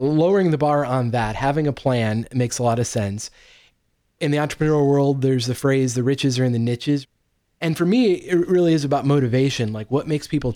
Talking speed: 215 wpm